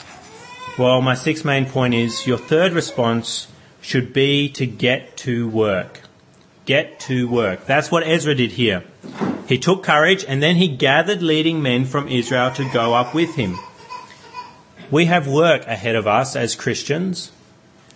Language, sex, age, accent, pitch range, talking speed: English, male, 30-49, Australian, 120-155 Hz, 155 wpm